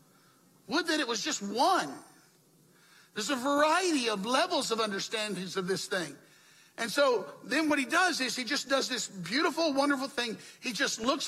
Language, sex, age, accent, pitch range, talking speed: English, male, 60-79, American, 165-275 Hz, 175 wpm